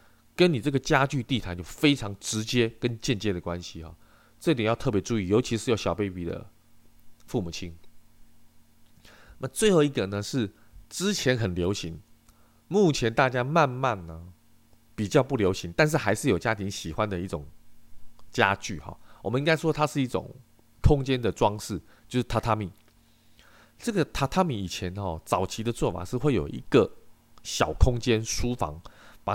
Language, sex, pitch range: Chinese, male, 95-125 Hz